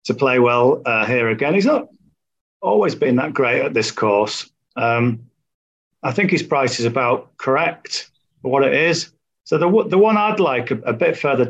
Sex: male